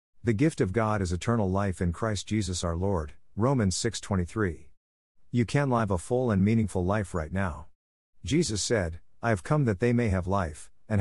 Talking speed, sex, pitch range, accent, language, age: 190 wpm, male, 90-115 Hz, American, English, 50-69